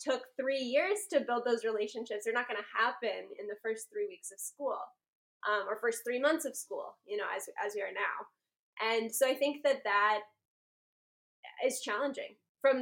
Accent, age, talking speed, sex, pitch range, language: American, 10-29, 195 wpm, female, 215-300 Hz, English